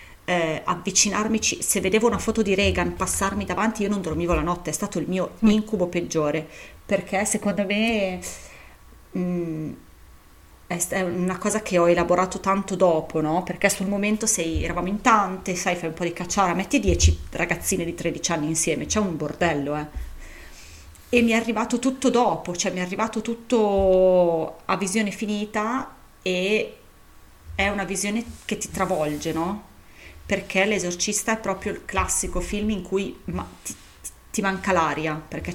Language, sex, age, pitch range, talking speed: Italian, female, 30-49, 165-200 Hz, 160 wpm